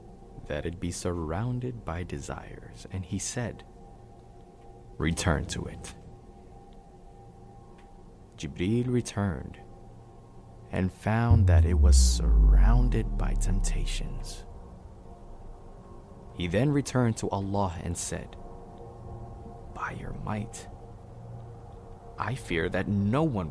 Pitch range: 90-115 Hz